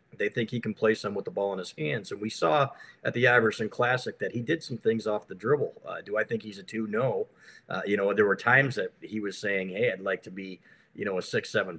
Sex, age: male, 40-59